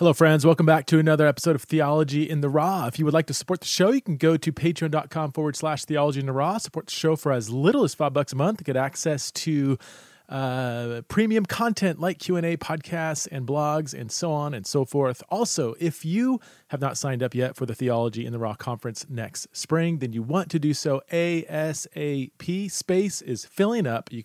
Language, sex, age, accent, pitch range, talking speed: English, male, 30-49, American, 125-160 Hz, 220 wpm